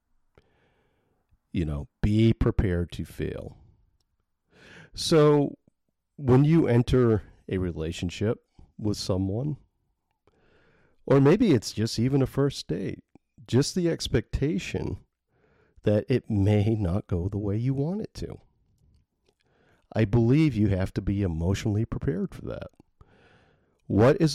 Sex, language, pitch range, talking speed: male, English, 85-115 Hz, 120 wpm